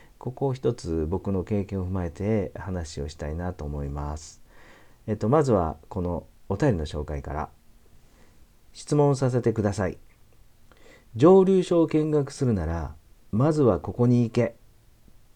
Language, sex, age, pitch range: Japanese, male, 40-59, 85-115 Hz